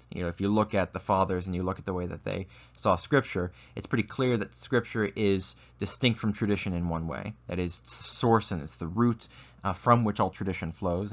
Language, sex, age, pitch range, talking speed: English, male, 30-49, 100-130 Hz, 245 wpm